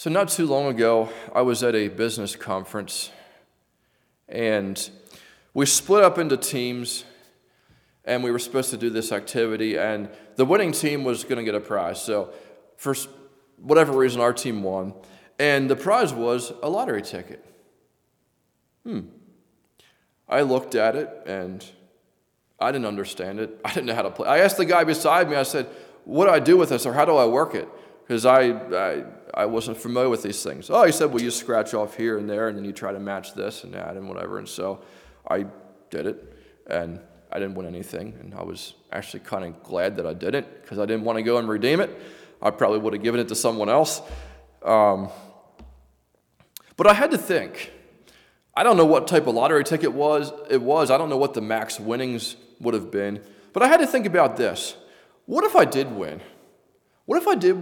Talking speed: 205 wpm